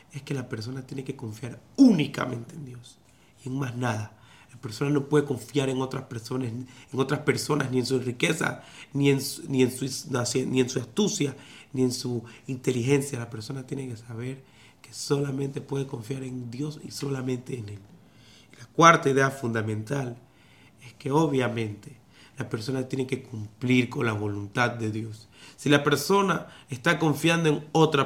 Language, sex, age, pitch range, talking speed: Spanish, male, 30-49, 125-150 Hz, 165 wpm